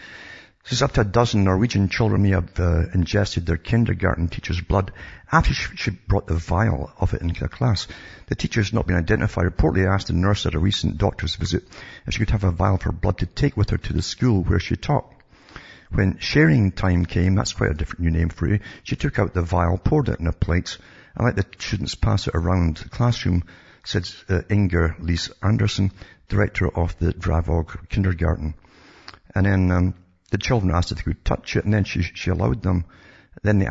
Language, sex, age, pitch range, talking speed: English, male, 50-69, 85-105 Hz, 215 wpm